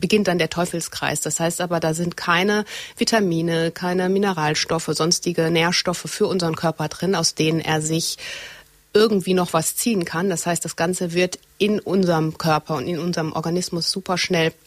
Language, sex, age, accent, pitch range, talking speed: German, female, 30-49, German, 160-190 Hz, 170 wpm